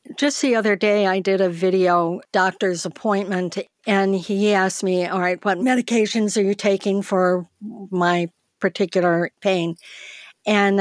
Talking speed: 145 wpm